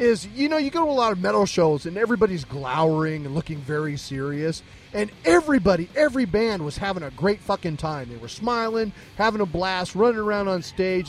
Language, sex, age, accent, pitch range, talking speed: English, male, 30-49, American, 140-205 Hz, 205 wpm